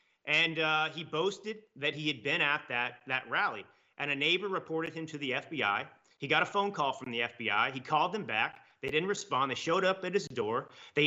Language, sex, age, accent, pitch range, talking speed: English, male, 30-49, American, 140-185 Hz, 230 wpm